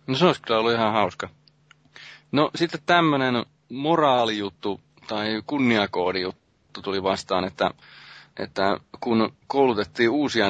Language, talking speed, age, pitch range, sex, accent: Finnish, 115 wpm, 30-49, 95-125 Hz, male, native